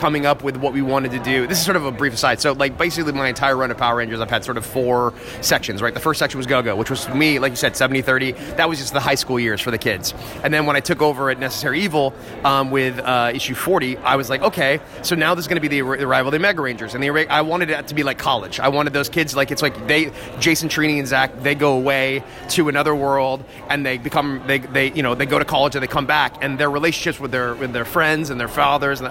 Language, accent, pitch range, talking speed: English, American, 130-155 Hz, 285 wpm